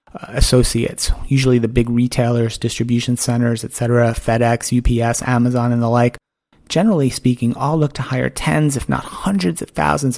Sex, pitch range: male, 120-140 Hz